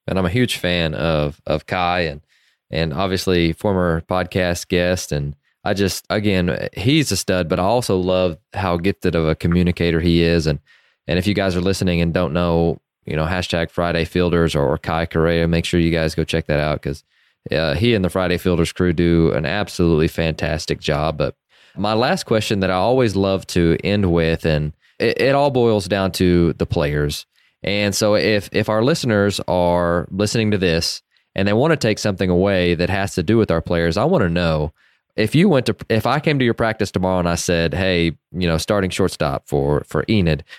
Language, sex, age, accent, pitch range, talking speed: English, male, 20-39, American, 85-100 Hz, 210 wpm